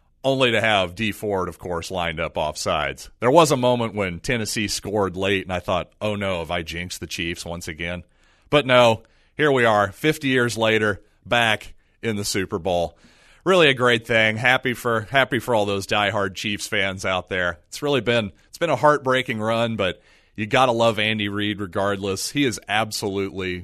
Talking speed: 195 wpm